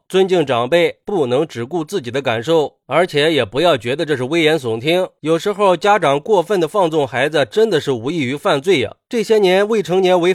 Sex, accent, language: male, native, Chinese